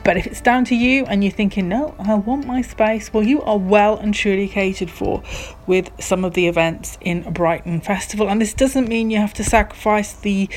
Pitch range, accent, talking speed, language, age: 185-225 Hz, British, 220 wpm, English, 30-49